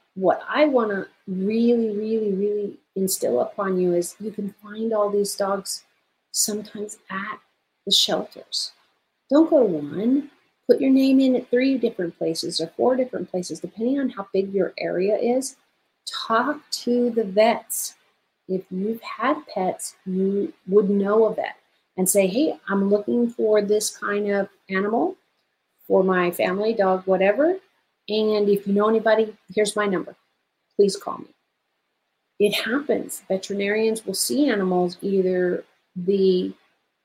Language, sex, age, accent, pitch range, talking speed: English, female, 40-59, American, 190-260 Hz, 145 wpm